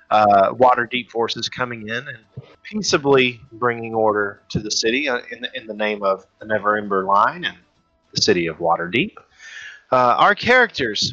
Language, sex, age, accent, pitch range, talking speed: English, male, 30-49, American, 110-155 Hz, 160 wpm